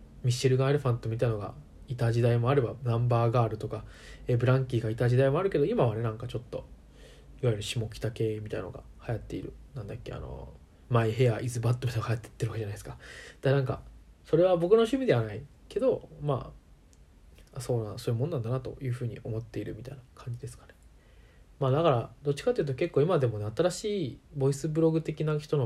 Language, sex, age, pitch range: Japanese, male, 20-39, 110-145 Hz